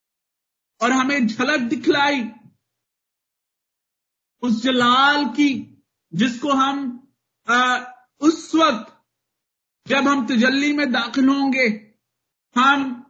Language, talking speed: Hindi, 80 wpm